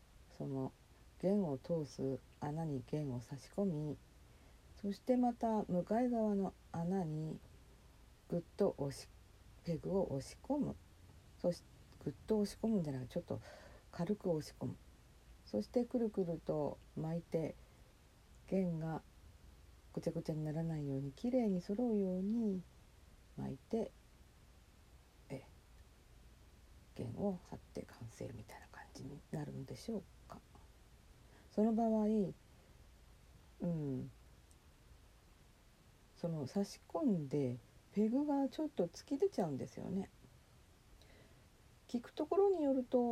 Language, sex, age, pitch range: Japanese, female, 50-69, 130-210 Hz